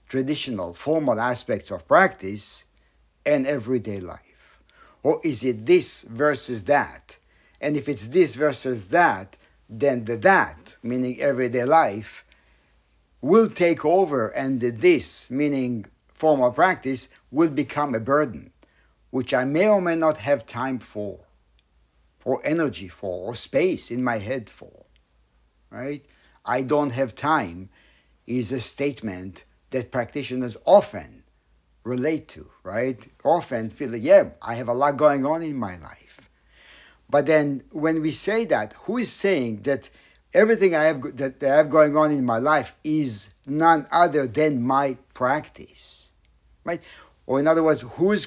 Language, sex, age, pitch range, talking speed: English, male, 60-79, 110-150 Hz, 145 wpm